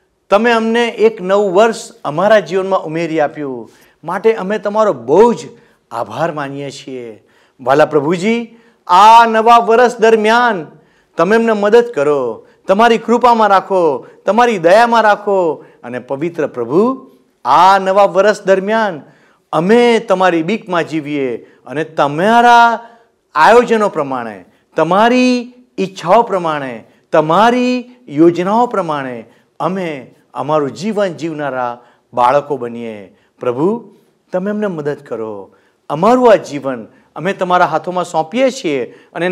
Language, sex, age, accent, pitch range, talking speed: Gujarati, male, 50-69, native, 145-225 Hz, 110 wpm